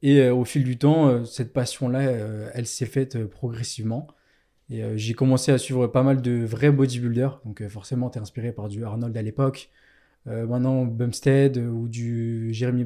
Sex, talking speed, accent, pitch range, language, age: male, 175 wpm, French, 115-140 Hz, French, 20-39